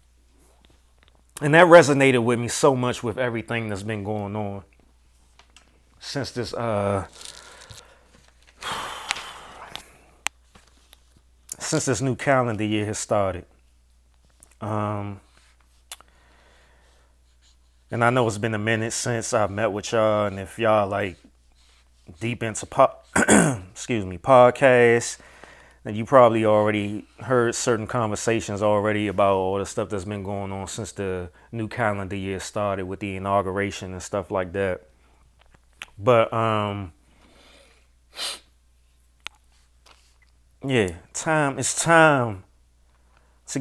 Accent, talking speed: American, 115 wpm